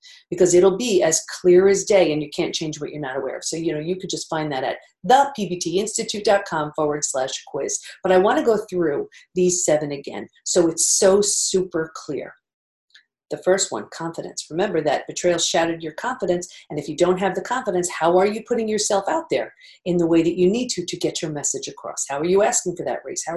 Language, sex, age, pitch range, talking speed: English, female, 50-69, 165-220 Hz, 225 wpm